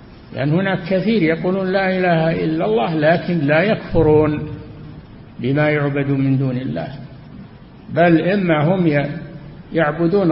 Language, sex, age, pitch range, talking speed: Arabic, male, 60-79, 140-185 Hz, 120 wpm